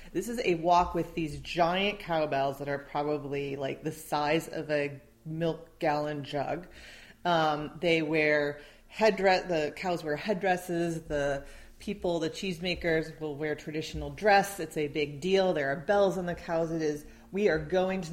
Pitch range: 150-185 Hz